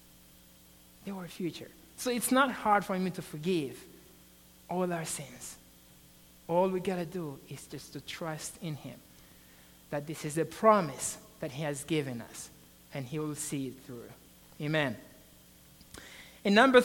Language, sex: English, male